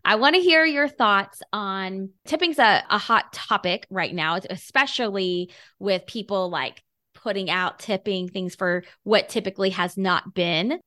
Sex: female